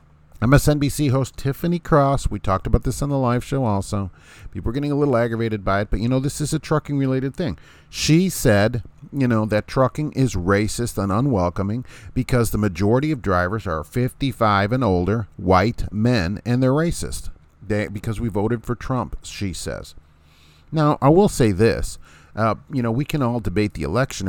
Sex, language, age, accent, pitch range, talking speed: male, English, 40-59, American, 90-130 Hz, 185 wpm